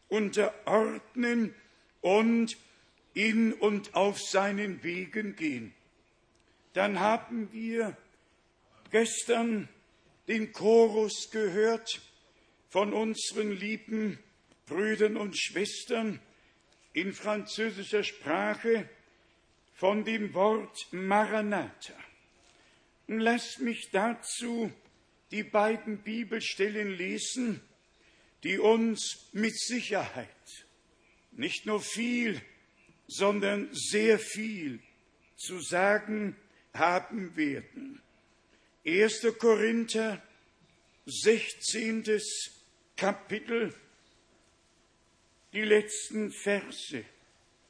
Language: German